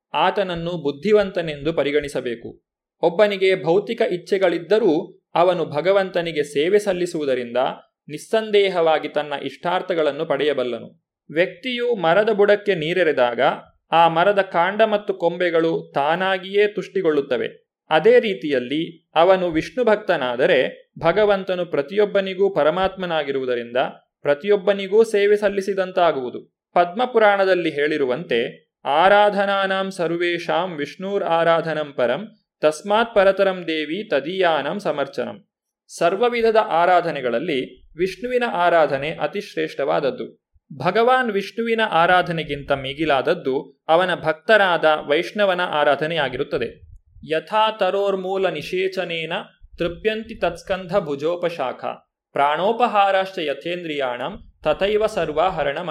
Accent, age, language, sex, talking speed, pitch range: native, 30-49, Kannada, male, 70 wpm, 160-205 Hz